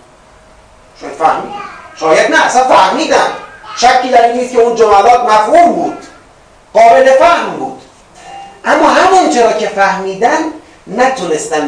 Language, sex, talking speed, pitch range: Persian, male, 110 wpm, 200-310 Hz